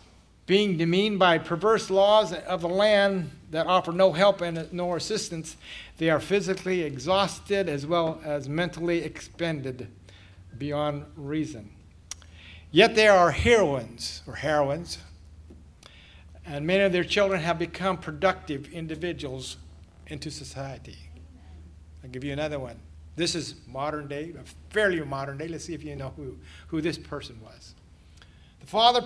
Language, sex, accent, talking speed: English, male, American, 135 wpm